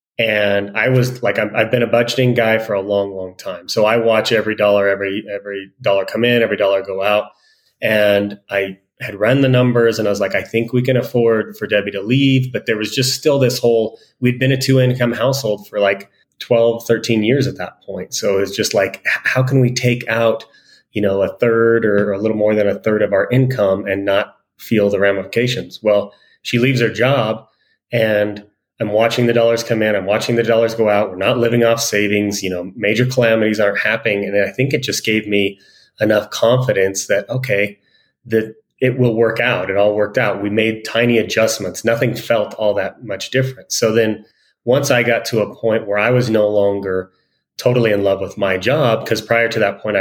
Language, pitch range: English, 100-120 Hz